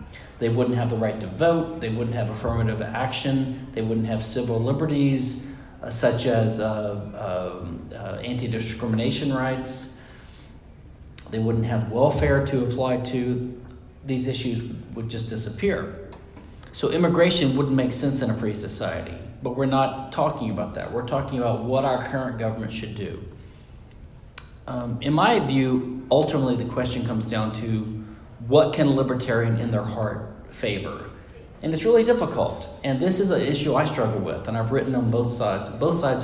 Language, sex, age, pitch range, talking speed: English, male, 40-59, 110-130 Hz, 160 wpm